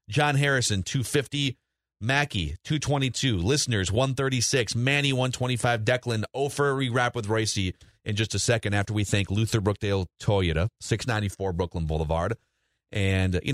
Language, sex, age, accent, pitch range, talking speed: English, male, 30-49, American, 105-140 Hz, 135 wpm